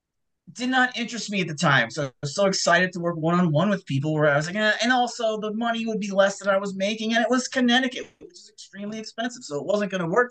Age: 30-49